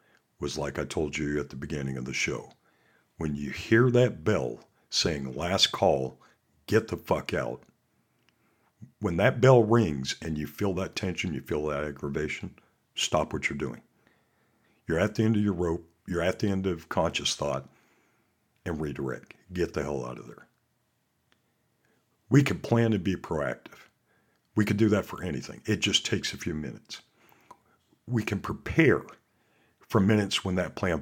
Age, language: 60-79, English